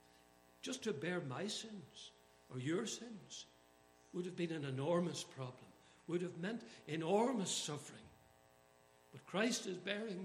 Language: English